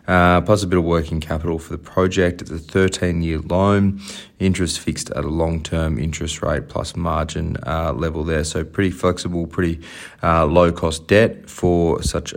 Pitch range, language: 80-90 Hz, English